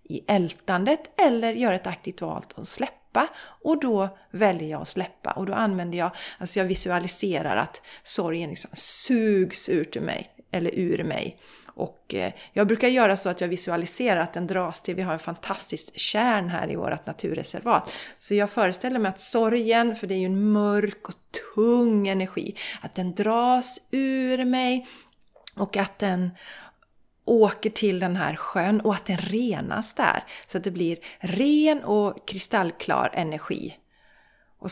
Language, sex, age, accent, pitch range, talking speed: Swedish, female, 30-49, native, 180-240 Hz, 165 wpm